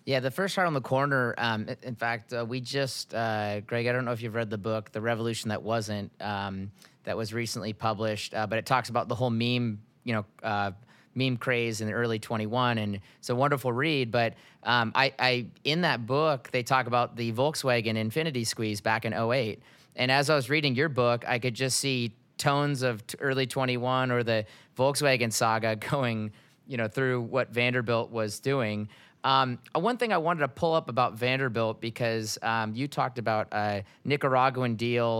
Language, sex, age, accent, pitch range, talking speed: English, male, 30-49, American, 110-135 Hz, 205 wpm